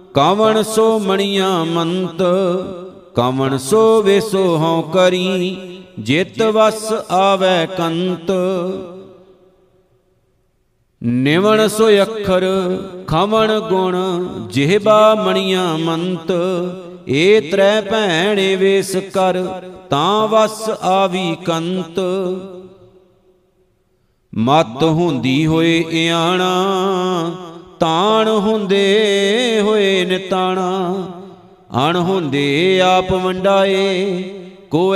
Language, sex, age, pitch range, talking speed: Punjabi, male, 50-69, 180-195 Hz, 75 wpm